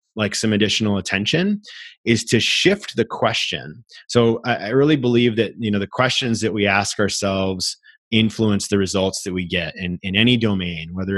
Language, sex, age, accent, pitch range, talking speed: English, male, 30-49, American, 100-115 Hz, 175 wpm